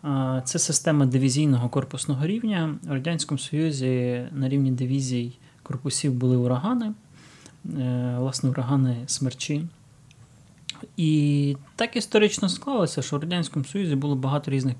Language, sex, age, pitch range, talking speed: Ukrainian, male, 20-39, 130-160 Hz, 115 wpm